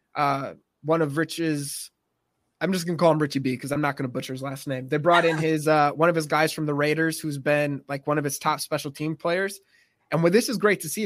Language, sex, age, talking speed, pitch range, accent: English, male, 20-39, 270 wpm, 140-160 Hz, American